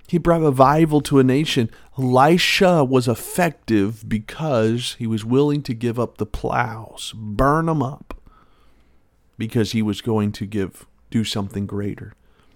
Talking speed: 145 wpm